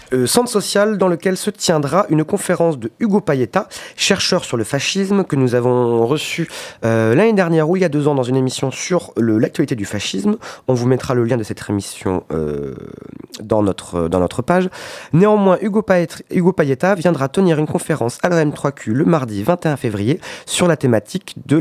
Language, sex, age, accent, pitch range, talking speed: French, male, 30-49, French, 125-175 Hz, 185 wpm